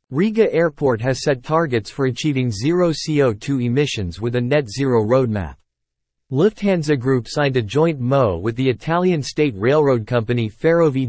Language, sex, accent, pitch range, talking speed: English, male, American, 115-150 Hz, 145 wpm